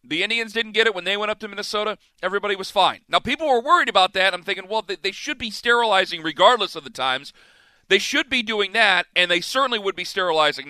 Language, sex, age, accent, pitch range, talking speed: English, male, 40-59, American, 185-245 Hz, 235 wpm